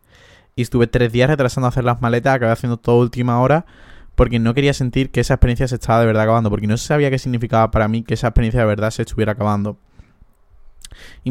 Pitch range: 110-125 Hz